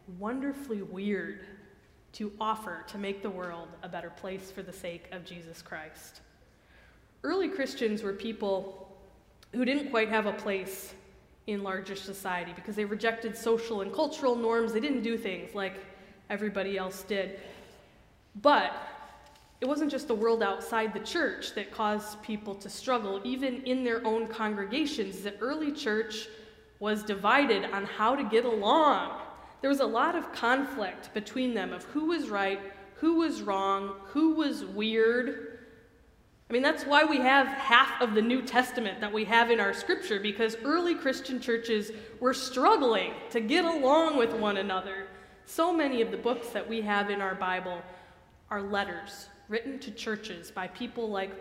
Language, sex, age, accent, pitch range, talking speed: English, female, 20-39, American, 195-255 Hz, 165 wpm